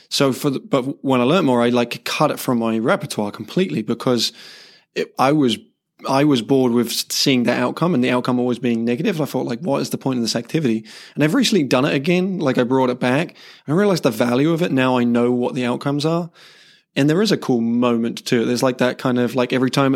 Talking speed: 250 wpm